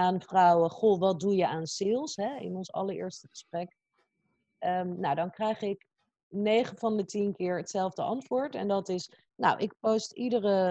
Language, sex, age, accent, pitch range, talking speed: Dutch, female, 40-59, Dutch, 175-215 Hz, 180 wpm